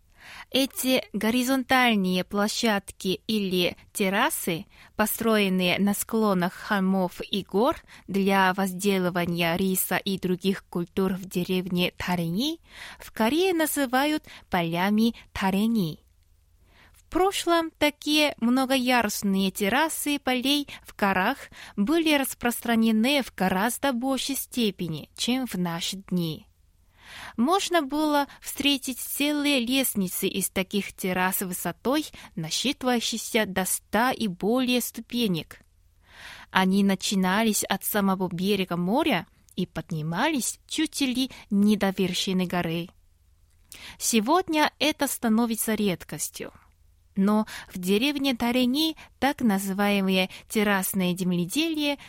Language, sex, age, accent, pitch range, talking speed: Russian, female, 20-39, native, 185-255 Hz, 100 wpm